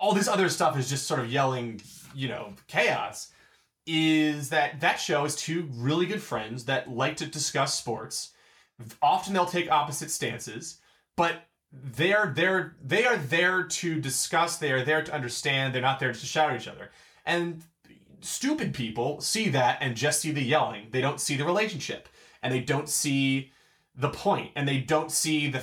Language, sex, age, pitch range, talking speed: English, male, 30-49, 130-170 Hz, 185 wpm